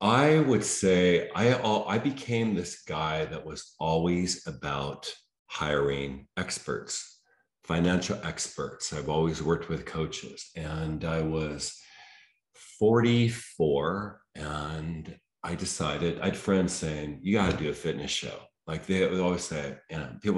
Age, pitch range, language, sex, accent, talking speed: 40-59, 80-95 Hz, English, male, American, 135 wpm